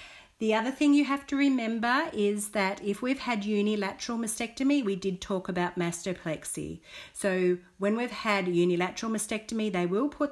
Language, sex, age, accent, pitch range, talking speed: English, female, 40-59, Australian, 165-215 Hz, 165 wpm